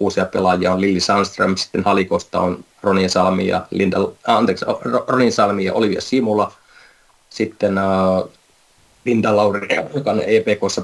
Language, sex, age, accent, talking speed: Finnish, male, 20-39, native, 120 wpm